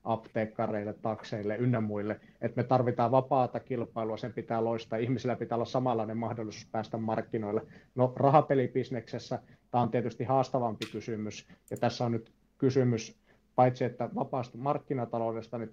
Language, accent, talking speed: Finnish, native, 135 wpm